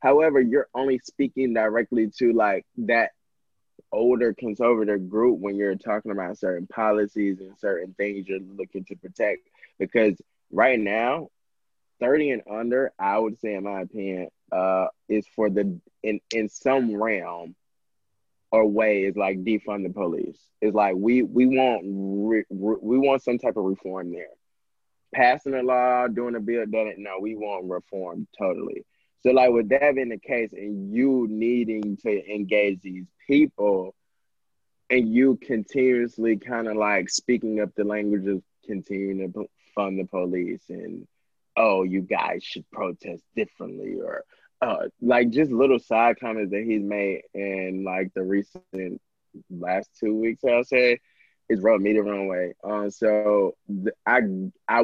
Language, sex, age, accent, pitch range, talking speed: English, male, 20-39, American, 100-120 Hz, 160 wpm